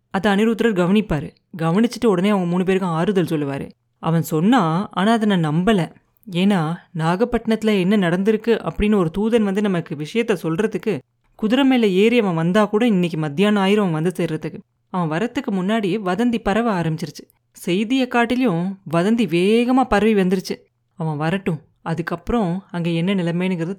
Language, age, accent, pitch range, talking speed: Tamil, 30-49, native, 170-225 Hz, 145 wpm